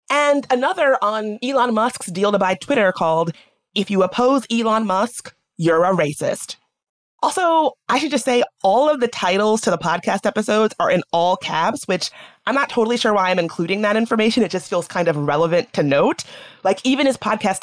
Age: 30-49